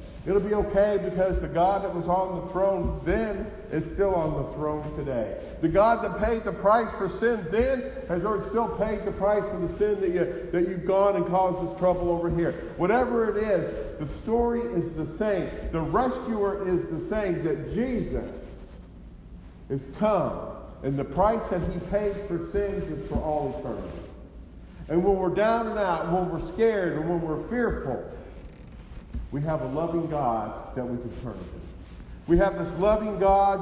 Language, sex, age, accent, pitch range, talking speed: English, male, 50-69, American, 150-200 Hz, 185 wpm